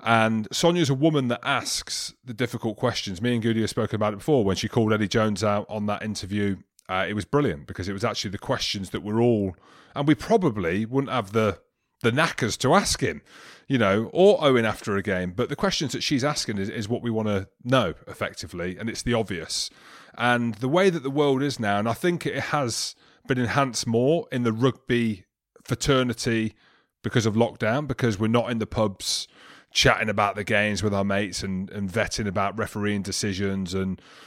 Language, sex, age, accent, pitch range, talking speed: English, male, 30-49, British, 105-120 Hz, 205 wpm